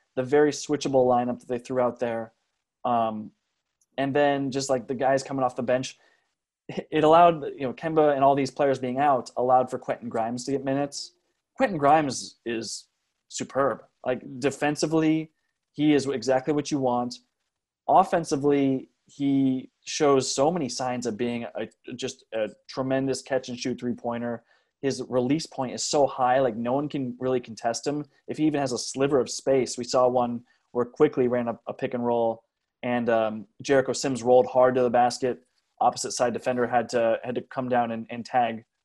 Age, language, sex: 20-39, English, male